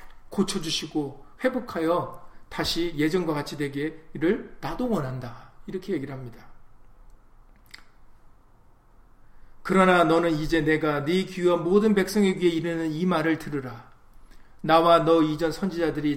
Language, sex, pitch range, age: Korean, male, 150-195 Hz, 40-59